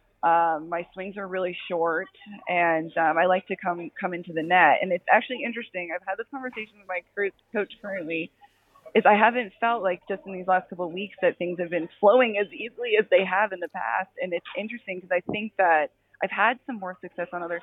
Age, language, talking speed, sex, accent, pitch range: 20-39, English, 230 wpm, female, American, 170-205 Hz